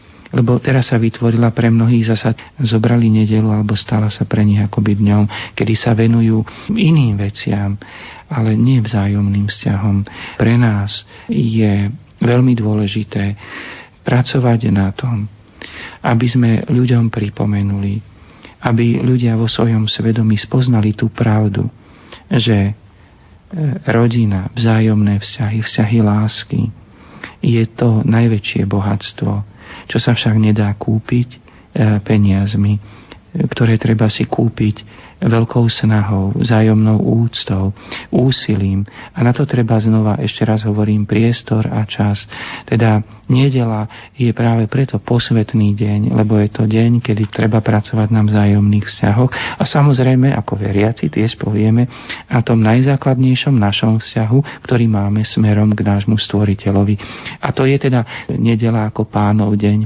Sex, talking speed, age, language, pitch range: male, 125 wpm, 40-59, Slovak, 105-115 Hz